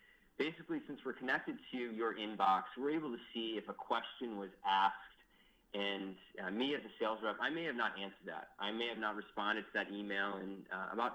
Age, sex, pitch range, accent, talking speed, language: 30-49, male, 105-125 Hz, American, 215 wpm, English